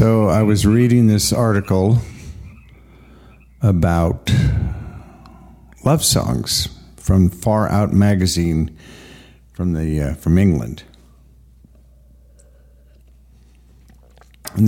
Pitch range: 80-105 Hz